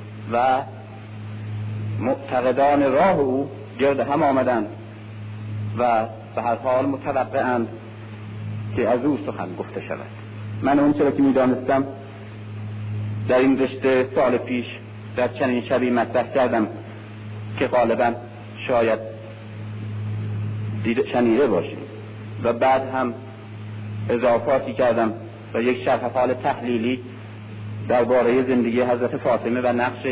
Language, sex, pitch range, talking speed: Persian, male, 105-130 Hz, 110 wpm